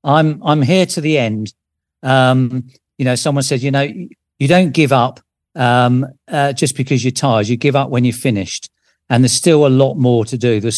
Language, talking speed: English, 210 wpm